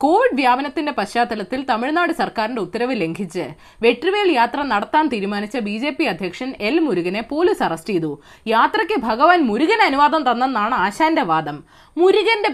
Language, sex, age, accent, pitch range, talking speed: Malayalam, female, 20-39, native, 215-330 Hz, 125 wpm